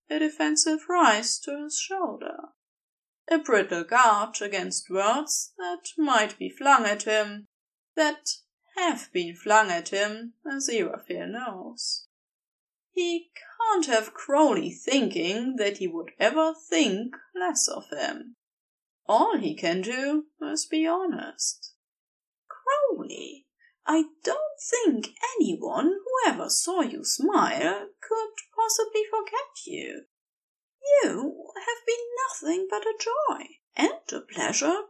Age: 20-39